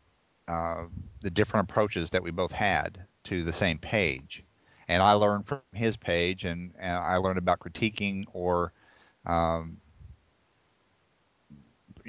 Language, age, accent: English, 40-59, American